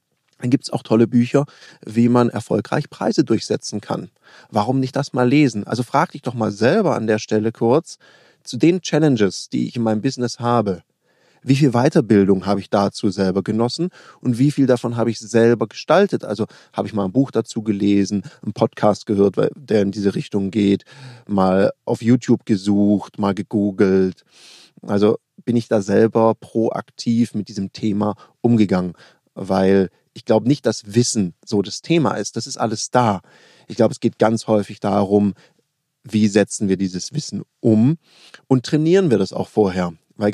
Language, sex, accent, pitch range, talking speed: German, male, German, 100-125 Hz, 175 wpm